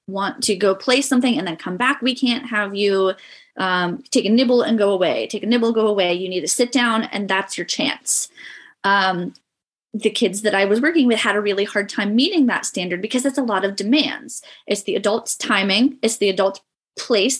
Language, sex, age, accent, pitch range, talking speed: English, female, 20-39, American, 195-240 Hz, 220 wpm